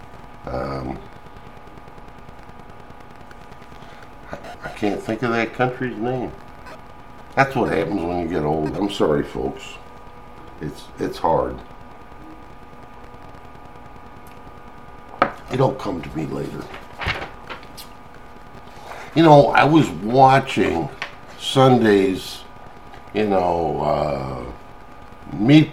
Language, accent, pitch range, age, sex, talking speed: English, American, 100-125 Hz, 60-79, male, 85 wpm